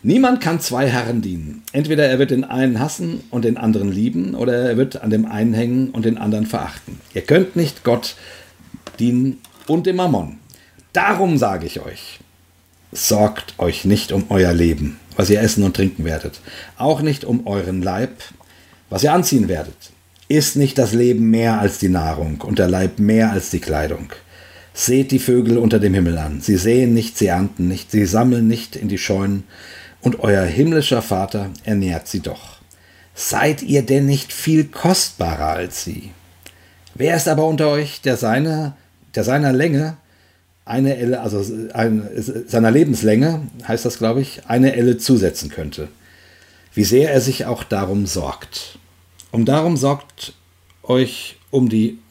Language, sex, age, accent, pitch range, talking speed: German, male, 50-69, German, 90-130 Hz, 165 wpm